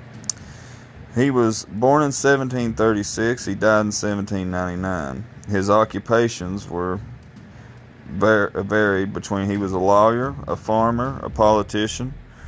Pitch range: 95-115 Hz